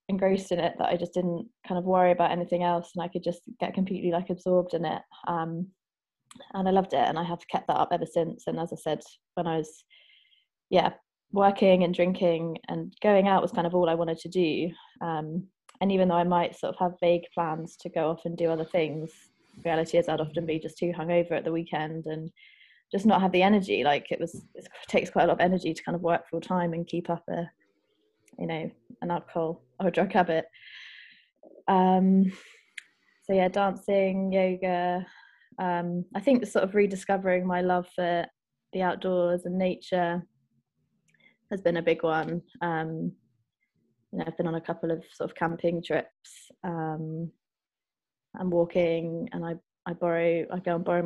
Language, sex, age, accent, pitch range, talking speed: English, female, 20-39, British, 170-190 Hz, 200 wpm